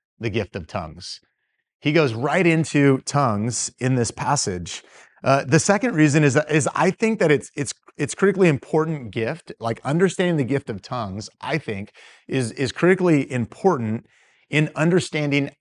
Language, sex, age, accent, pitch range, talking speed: English, male, 30-49, American, 115-150 Hz, 160 wpm